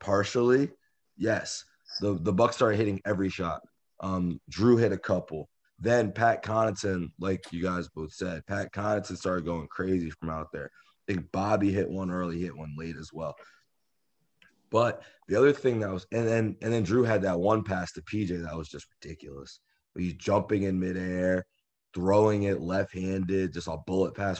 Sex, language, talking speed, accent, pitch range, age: male, English, 180 wpm, American, 90-110 Hz, 20-39